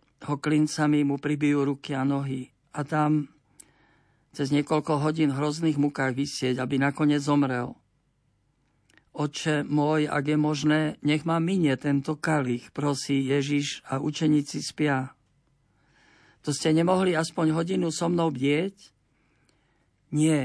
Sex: male